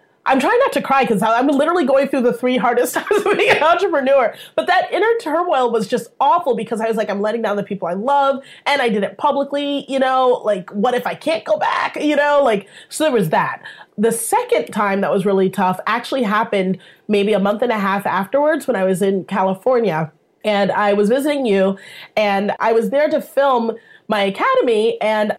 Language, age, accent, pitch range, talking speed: English, 30-49, American, 195-255 Hz, 220 wpm